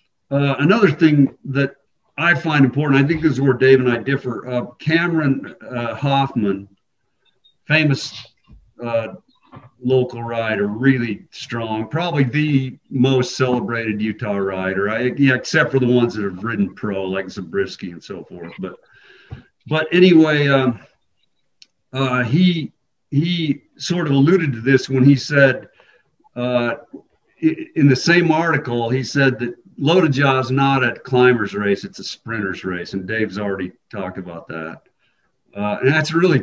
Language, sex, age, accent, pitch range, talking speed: English, male, 50-69, American, 115-145 Hz, 150 wpm